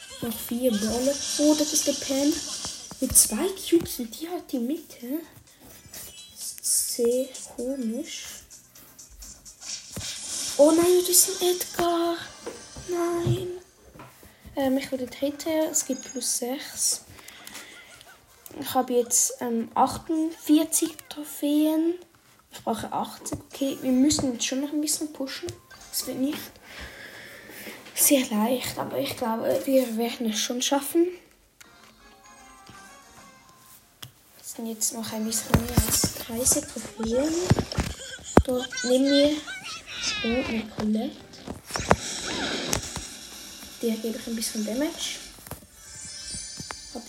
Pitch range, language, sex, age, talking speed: 250-310 Hz, German, female, 10-29, 110 wpm